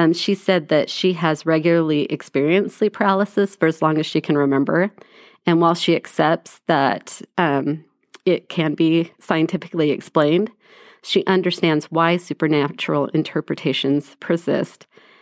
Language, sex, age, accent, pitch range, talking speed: English, female, 40-59, American, 160-190 Hz, 135 wpm